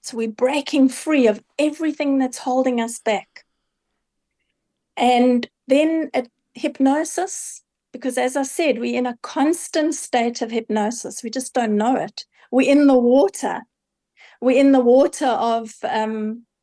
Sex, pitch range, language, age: female, 230-280 Hz, English, 50-69